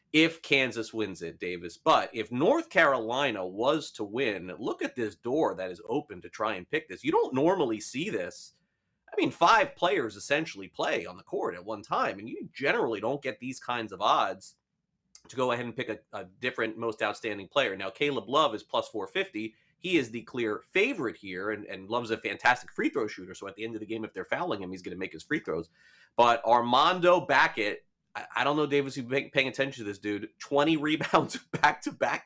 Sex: male